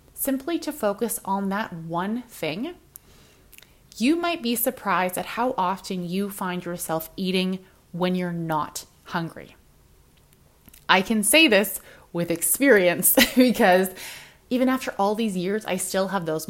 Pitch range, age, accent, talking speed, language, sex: 180-240 Hz, 20-39, American, 140 wpm, English, female